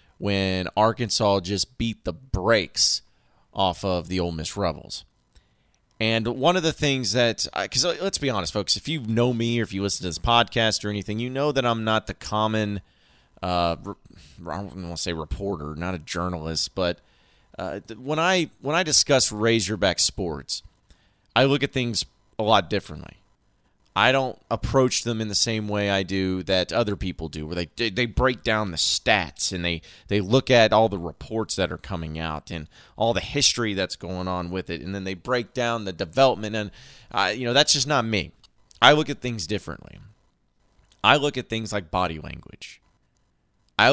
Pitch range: 90-120 Hz